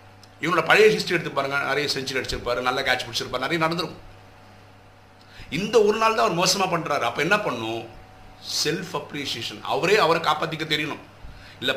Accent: native